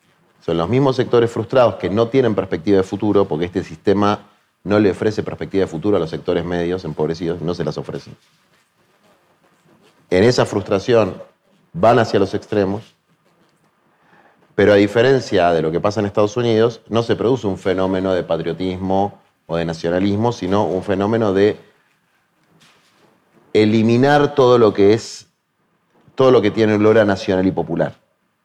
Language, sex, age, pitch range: Spanish, male, 30-49, 90-110 Hz